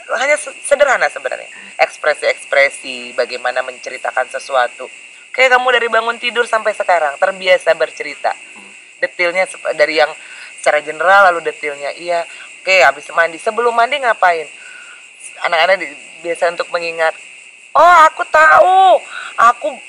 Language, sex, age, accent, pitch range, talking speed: Indonesian, female, 30-49, native, 170-255 Hz, 120 wpm